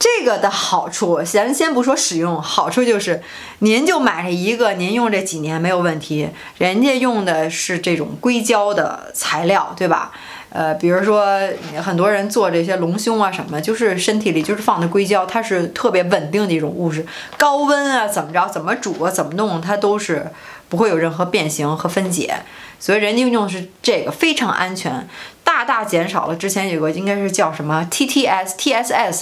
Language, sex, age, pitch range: Chinese, female, 20-39, 165-225 Hz